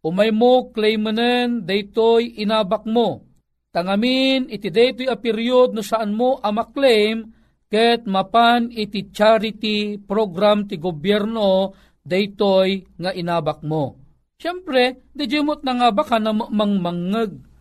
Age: 40-59